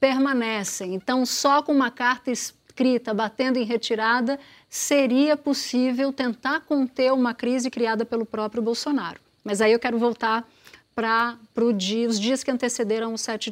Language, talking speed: Portuguese, 140 wpm